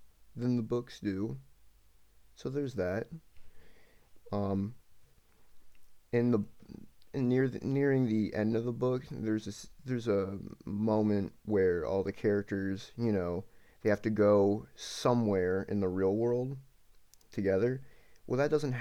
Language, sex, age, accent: English, male, 30-49, American